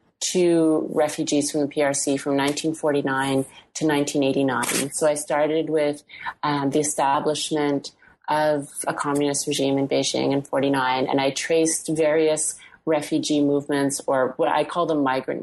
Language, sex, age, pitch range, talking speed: English, female, 30-49, 140-165 Hz, 140 wpm